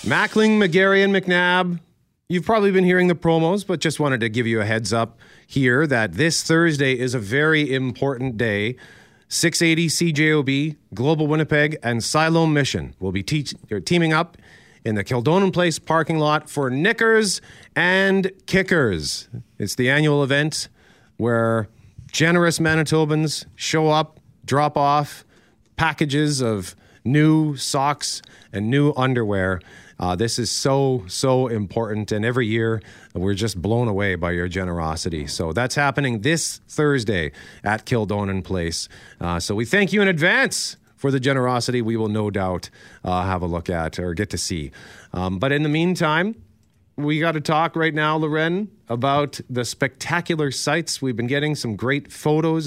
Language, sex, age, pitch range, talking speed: English, male, 40-59, 110-155 Hz, 155 wpm